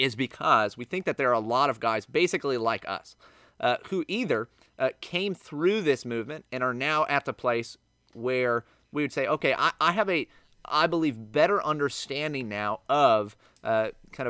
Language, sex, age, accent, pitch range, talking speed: English, male, 30-49, American, 115-155 Hz, 190 wpm